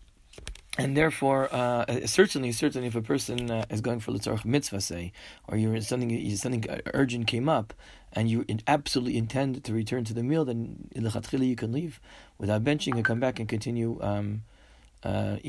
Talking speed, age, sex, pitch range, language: 175 wpm, 40-59, male, 105-120 Hz, English